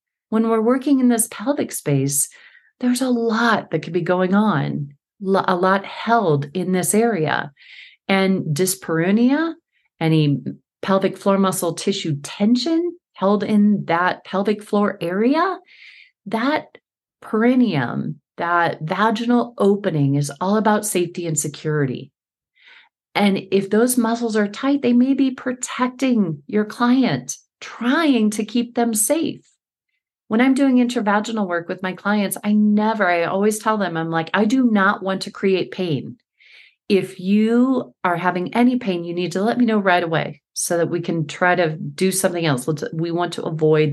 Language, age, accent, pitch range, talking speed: English, 40-59, American, 175-235 Hz, 155 wpm